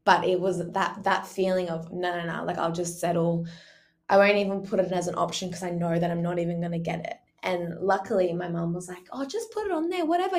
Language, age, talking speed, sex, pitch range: English, 20-39, 265 wpm, female, 170-200 Hz